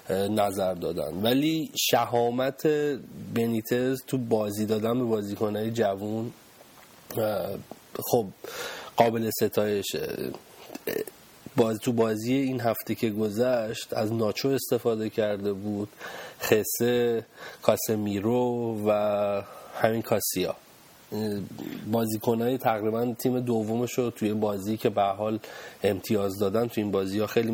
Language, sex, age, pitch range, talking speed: Persian, male, 30-49, 105-120 Hz, 100 wpm